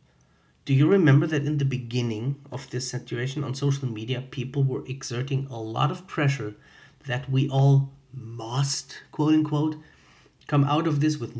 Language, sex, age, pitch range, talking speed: English, male, 30-49, 130-150 Hz, 160 wpm